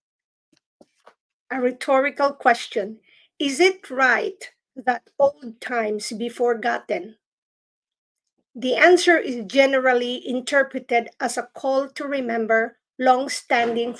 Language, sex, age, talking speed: English, female, 50-69, 95 wpm